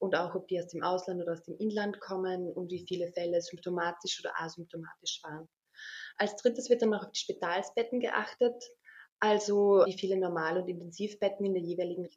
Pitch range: 180-225 Hz